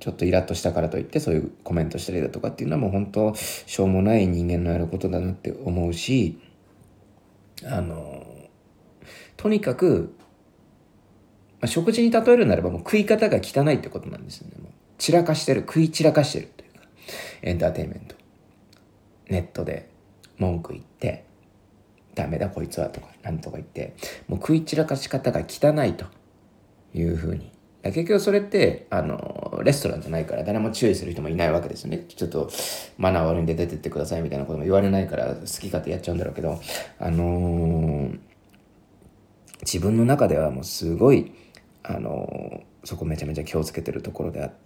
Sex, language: male, Japanese